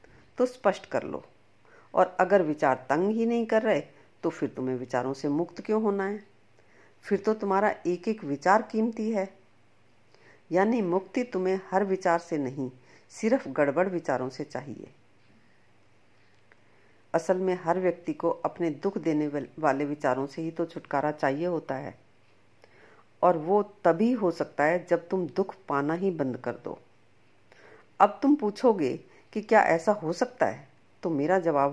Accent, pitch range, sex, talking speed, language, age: native, 135-195 Hz, female, 160 wpm, Hindi, 50-69